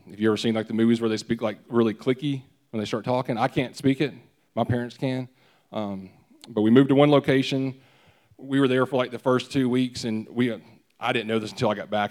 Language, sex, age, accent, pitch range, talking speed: English, male, 30-49, American, 105-125 Hz, 255 wpm